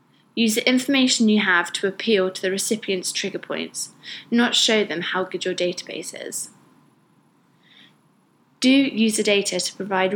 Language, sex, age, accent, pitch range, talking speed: English, female, 20-39, British, 180-225 Hz, 155 wpm